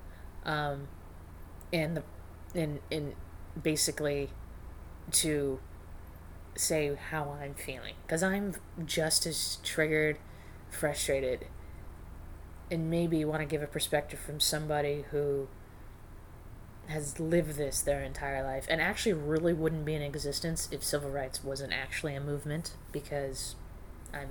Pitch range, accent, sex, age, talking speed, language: 100-160 Hz, American, female, 20-39, 120 wpm, English